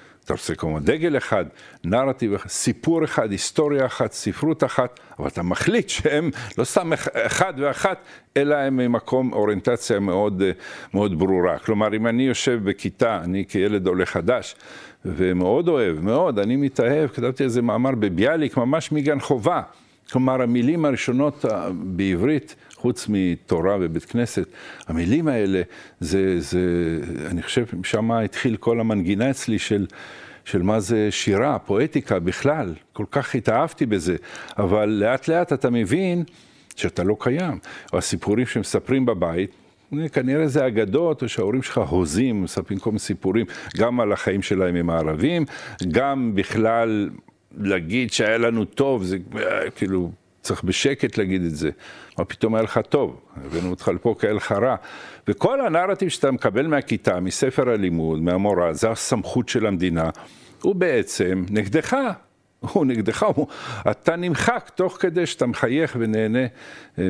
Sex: male